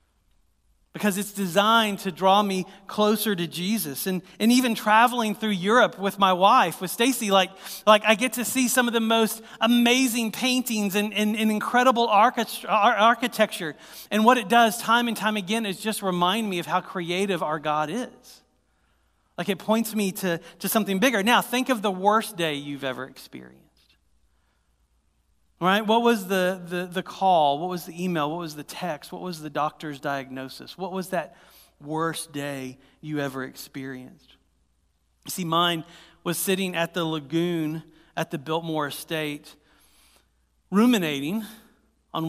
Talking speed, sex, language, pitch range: 160 wpm, male, English, 145-215 Hz